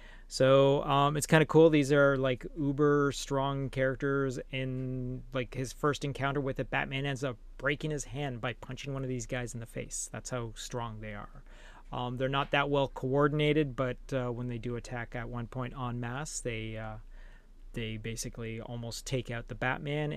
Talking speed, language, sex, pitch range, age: 190 wpm, English, male, 120-135 Hz, 30-49